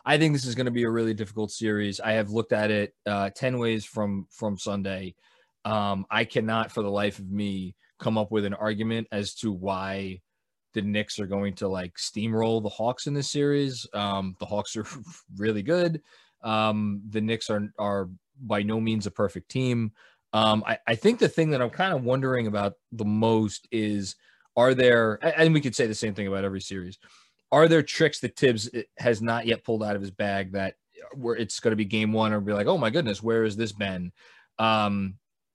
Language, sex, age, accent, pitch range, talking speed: English, male, 20-39, American, 105-125 Hz, 215 wpm